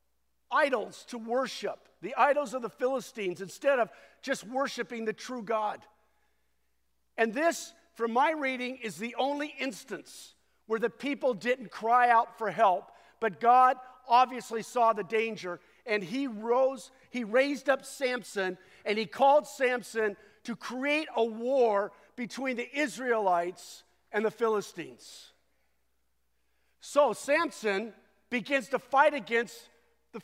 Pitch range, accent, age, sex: 210-280 Hz, American, 50-69, male